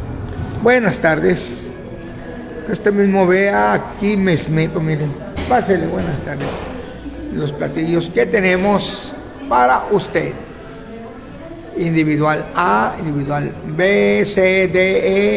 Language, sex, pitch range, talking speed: Spanish, male, 175-225 Hz, 100 wpm